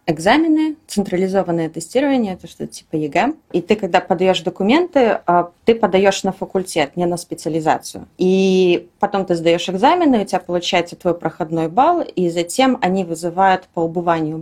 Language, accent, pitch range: Russian, native, 170-210 Hz